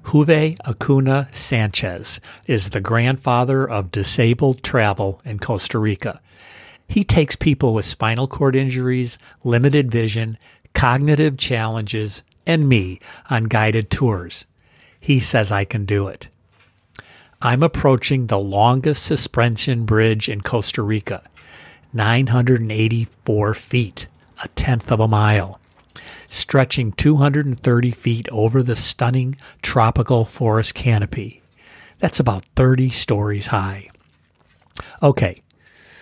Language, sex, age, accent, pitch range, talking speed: English, male, 50-69, American, 100-125 Hz, 110 wpm